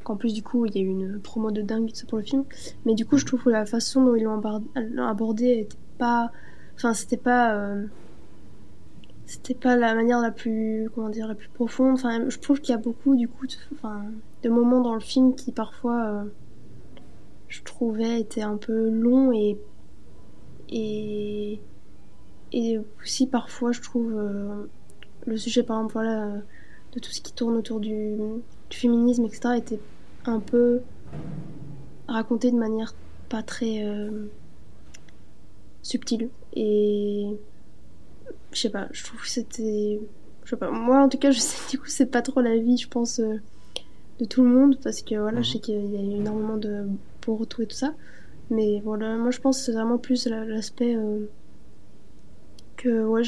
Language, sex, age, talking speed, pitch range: French, female, 20-39, 180 wpm, 215-245 Hz